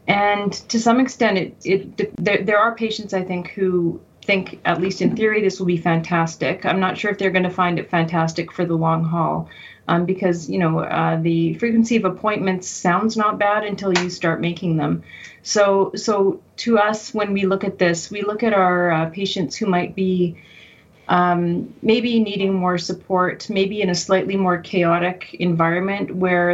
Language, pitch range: English, 170-200 Hz